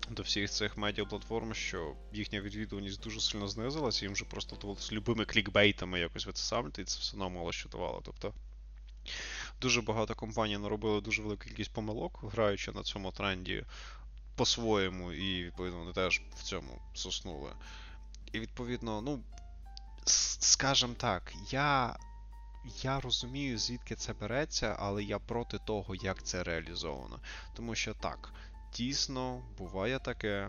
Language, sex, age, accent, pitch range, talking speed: Ukrainian, male, 20-39, native, 90-110 Hz, 140 wpm